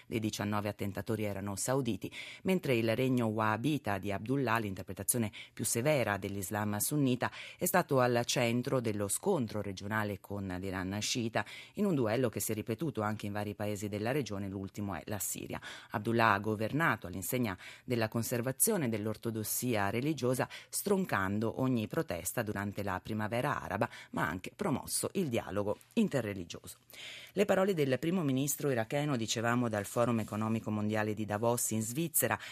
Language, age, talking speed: Italian, 30-49, 150 wpm